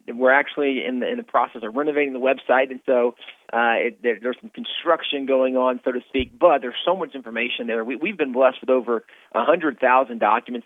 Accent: American